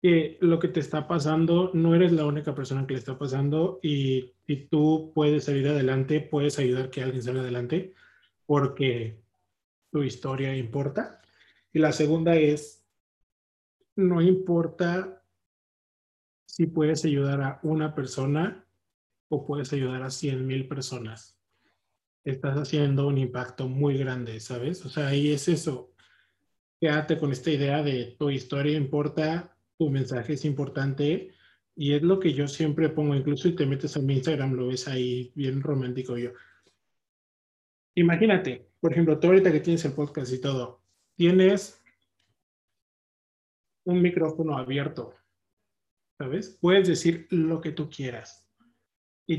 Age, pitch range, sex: 20-39, 130-165 Hz, male